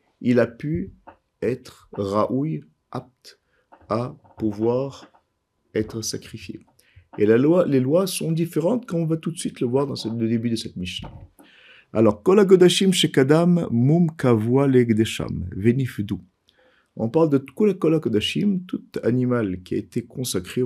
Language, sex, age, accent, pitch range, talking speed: French, male, 50-69, French, 110-165 Hz, 140 wpm